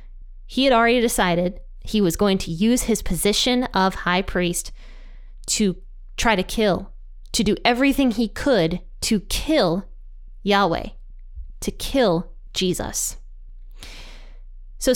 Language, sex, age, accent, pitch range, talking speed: English, female, 20-39, American, 180-240 Hz, 120 wpm